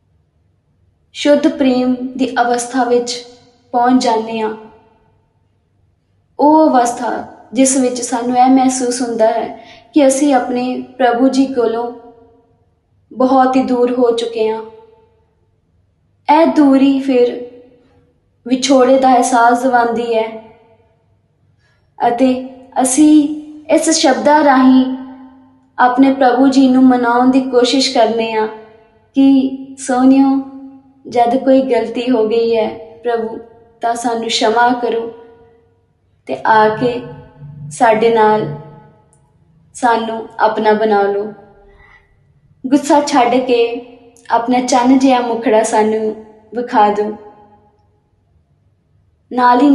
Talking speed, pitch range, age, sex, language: 85 wpm, 225-265 Hz, 20-39, female, Hindi